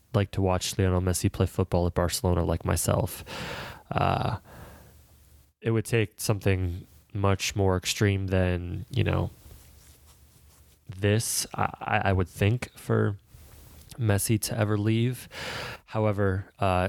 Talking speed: 120 wpm